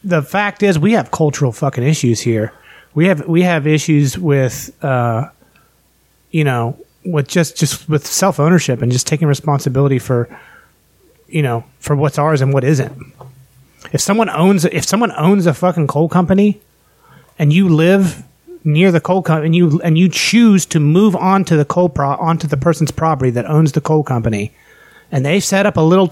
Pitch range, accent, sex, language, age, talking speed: 140-180 Hz, American, male, English, 30-49, 185 wpm